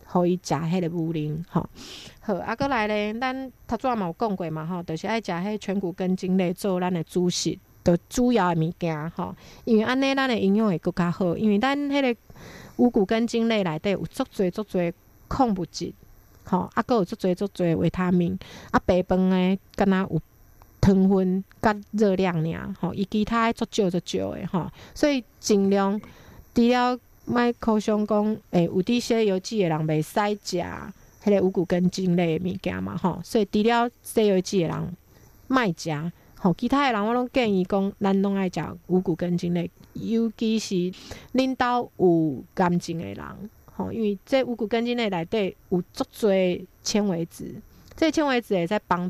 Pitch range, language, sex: 175-225 Hz, Chinese, female